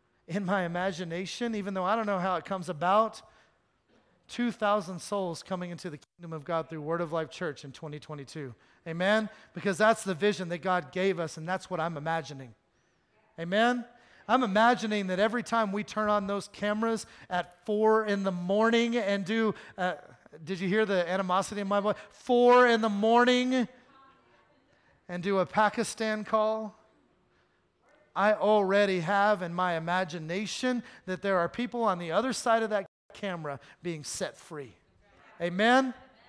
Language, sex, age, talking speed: English, male, 30-49, 160 wpm